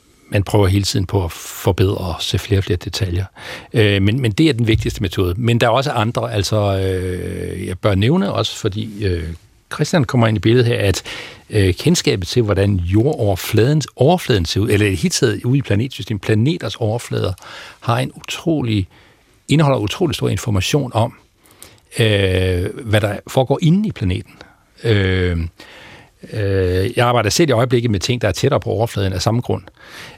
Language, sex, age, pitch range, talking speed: Danish, male, 60-79, 95-120 Hz, 175 wpm